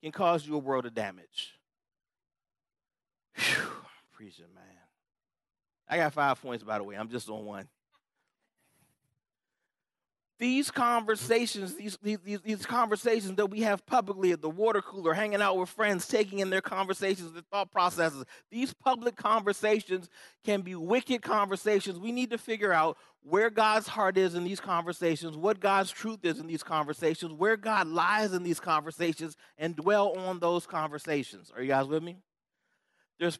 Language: English